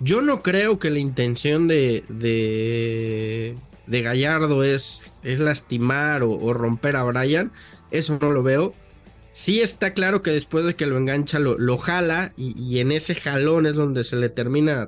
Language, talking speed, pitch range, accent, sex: English, 180 wpm, 120-155 Hz, Mexican, male